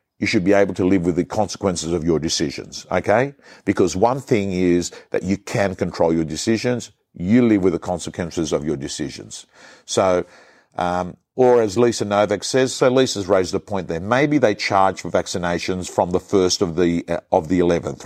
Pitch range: 90-120 Hz